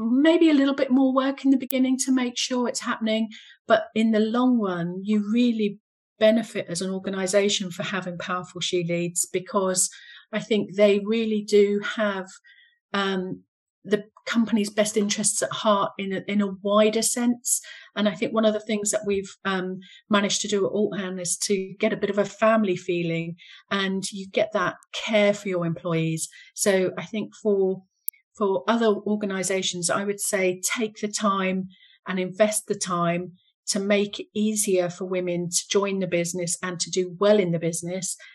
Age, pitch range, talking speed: 40-59, 185-215 Hz, 180 wpm